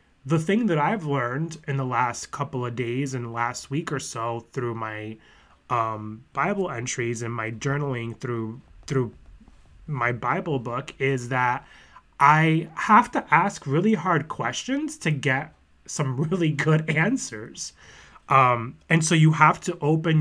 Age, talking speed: 20-39, 150 wpm